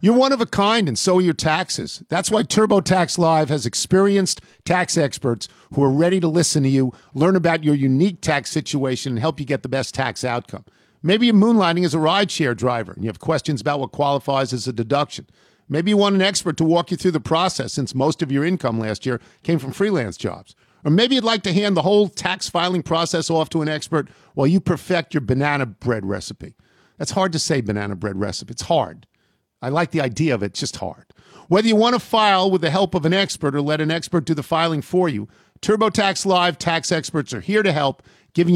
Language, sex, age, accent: English, male, 50-69, American